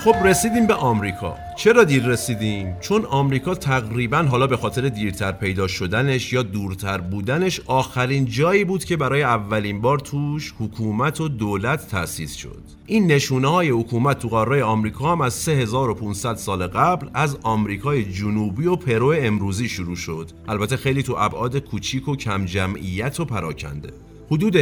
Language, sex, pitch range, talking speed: Persian, male, 100-145 Hz, 150 wpm